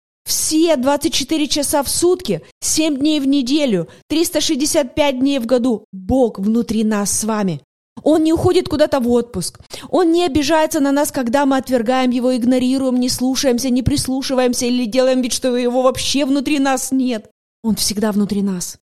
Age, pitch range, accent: 20-39, 240-290 Hz, native